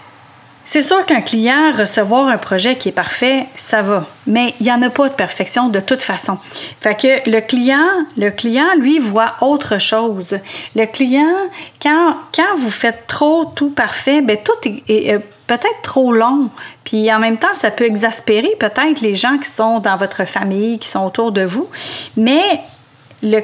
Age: 40-59